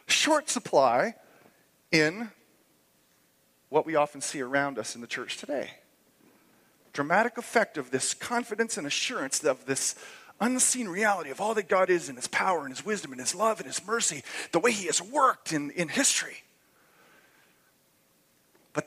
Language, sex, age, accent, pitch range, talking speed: English, male, 40-59, American, 130-190 Hz, 160 wpm